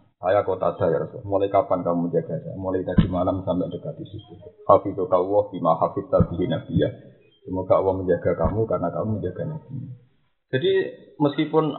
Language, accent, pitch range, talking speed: Indonesian, native, 95-160 Hz, 155 wpm